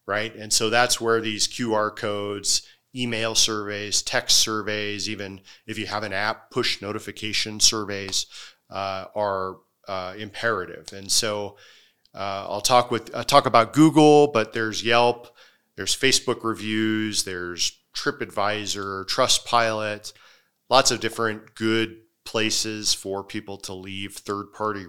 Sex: male